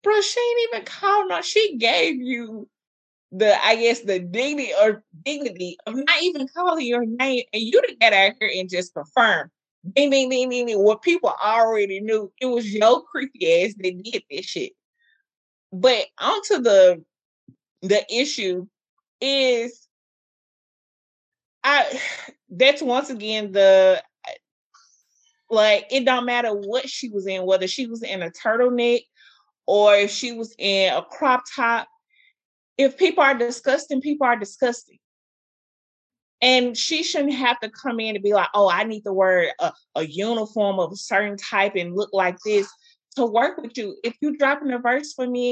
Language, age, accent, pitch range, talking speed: English, 20-39, American, 205-275 Hz, 160 wpm